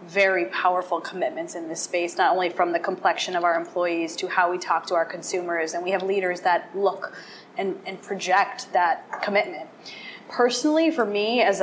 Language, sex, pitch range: English, female, 185-215 Hz